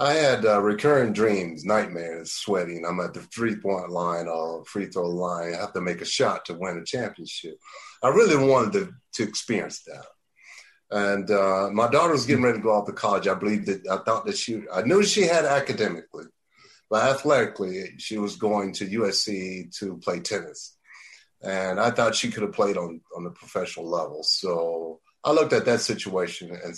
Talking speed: 195 wpm